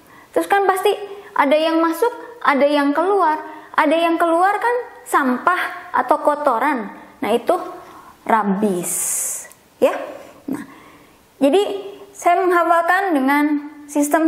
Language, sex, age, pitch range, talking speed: Indonesian, female, 20-39, 250-345 Hz, 110 wpm